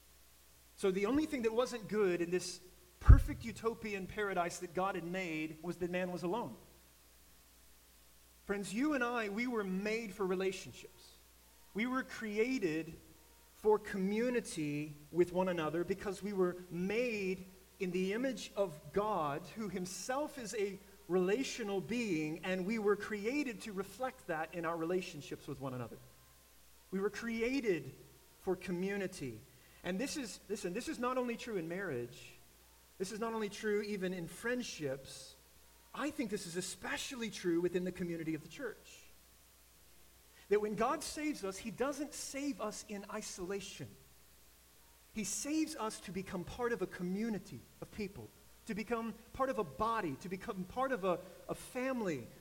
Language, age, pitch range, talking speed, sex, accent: English, 30-49, 160-220 Hz, 155 wpm, male, American